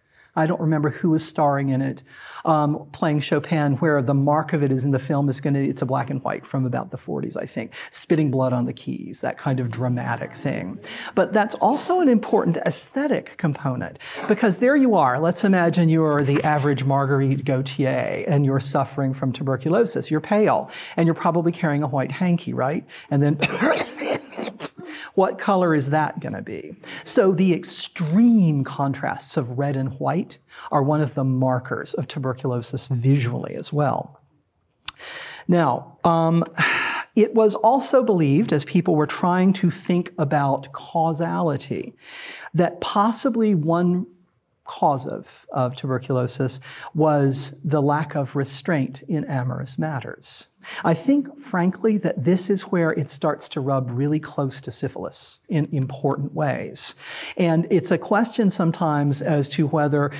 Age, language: 40-59, English